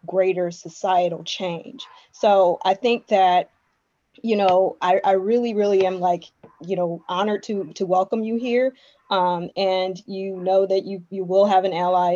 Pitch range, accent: 185-220 Hz, American